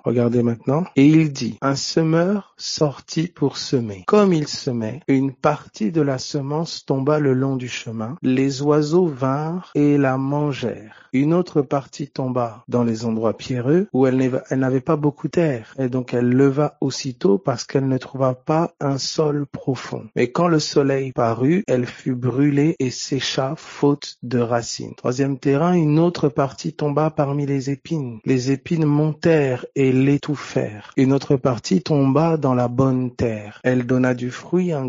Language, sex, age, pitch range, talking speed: French, male, 50-69, 130-155 Hz, 170 wpm